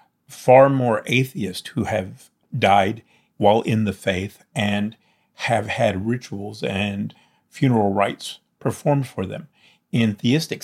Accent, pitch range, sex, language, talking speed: American, 100-115 Hz, male, English, 125 wpm